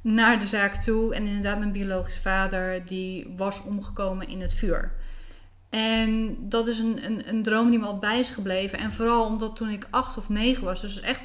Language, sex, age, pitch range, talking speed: Dutch, female, 20-39, 195-220 Hz, 210 wpm